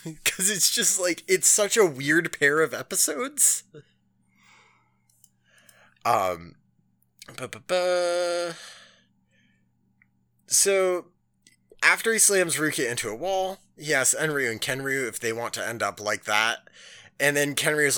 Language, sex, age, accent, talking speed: English, male, 20-39, American, 130 wpm